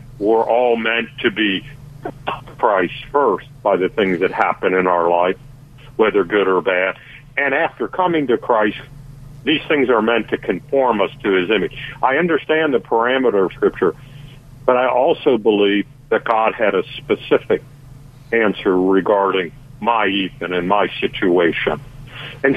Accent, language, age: American, English, 60-79